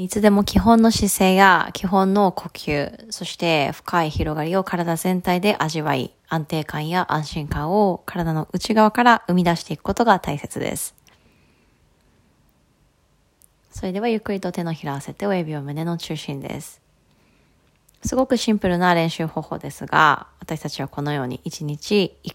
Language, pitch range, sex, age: Japanese, 145-195 Hz, female, 20-39